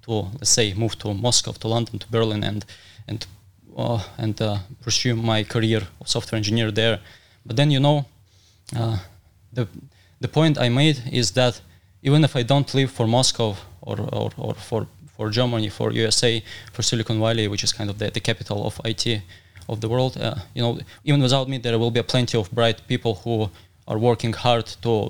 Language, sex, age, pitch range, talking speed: Russian, male, 20-39, 100-125 Hz, 195 wpm